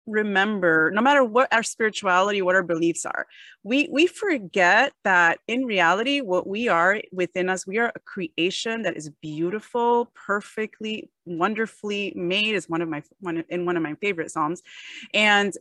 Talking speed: 165 wpm